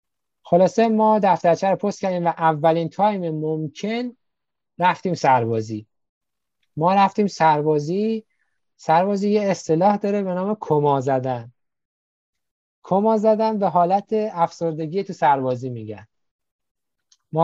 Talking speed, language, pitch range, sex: 110 wpm, Persian, 145-195 Hz, male